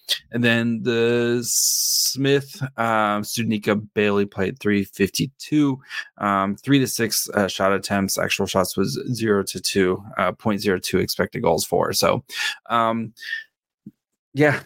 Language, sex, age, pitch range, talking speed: English, male, 20-39, 95-115 Hz, 125 wpm